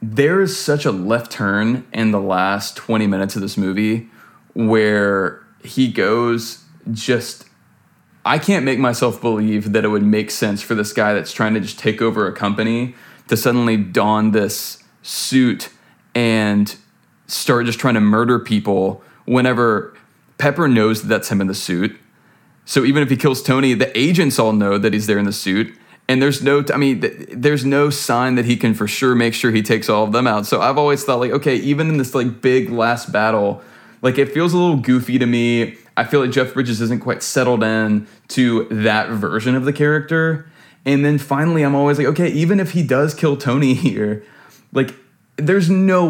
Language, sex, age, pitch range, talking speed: English, male, 20-39, 110-140 Hz, 195 wpm